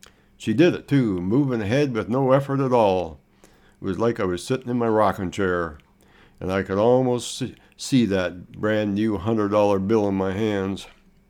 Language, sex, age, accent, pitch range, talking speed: English, male, 60-79, American, 95-115 Hz, 180 wpm